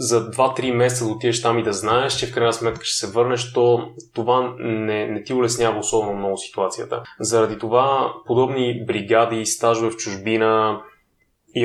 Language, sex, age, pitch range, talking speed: Bulgarian, male, 20-39, 110-120 Hz, 170 wpm